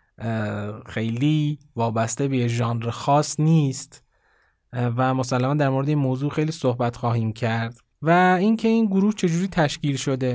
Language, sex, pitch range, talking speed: Persian, male, 125-165 Hz, 135 wpm